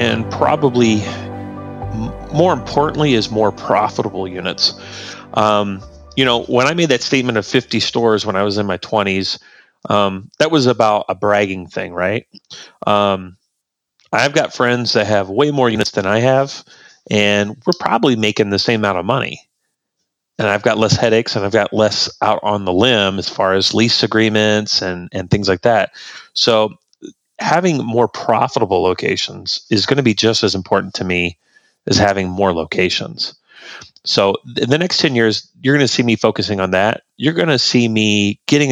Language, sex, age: English, male, 30-49